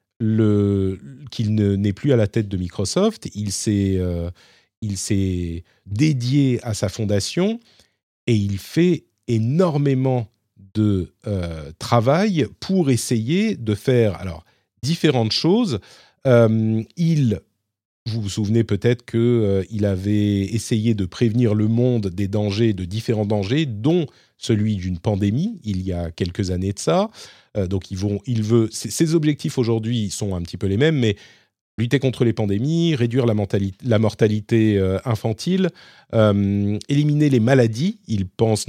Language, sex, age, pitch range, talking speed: French, male, 40-59, 100-130 Hz, 145 wpm